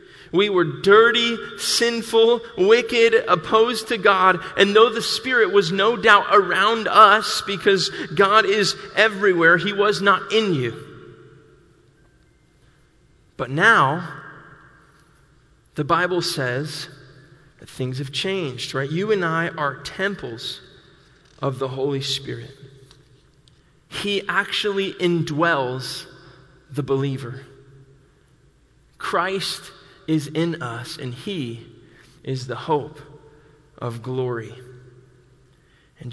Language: English